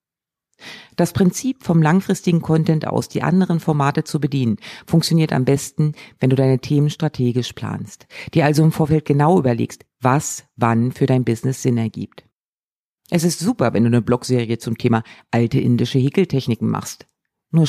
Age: 50-69